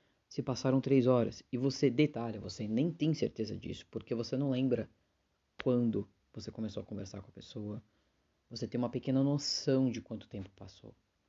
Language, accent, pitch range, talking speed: Portuguese, Brazilian, 105-125 Hz, 175 wpm